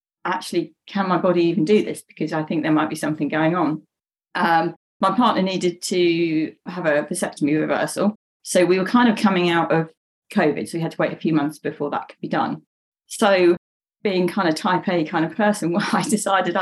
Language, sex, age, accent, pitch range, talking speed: English, female, 40-59, British, 170-220 Hz, 215 wpm